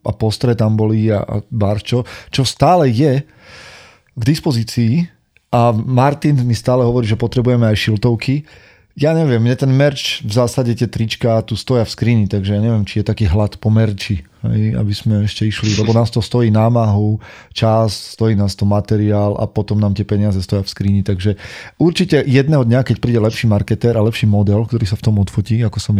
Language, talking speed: Slovak, 190 wpm